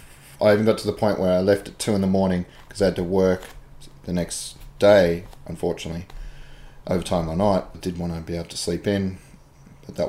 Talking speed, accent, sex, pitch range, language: 220 wpm, Australian, male, 85-105 Hz, English